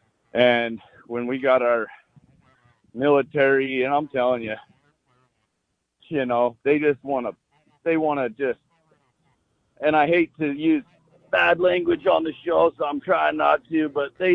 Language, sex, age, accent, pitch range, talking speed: English, male, 50-69, American, 130-150 Hz, 155 wpm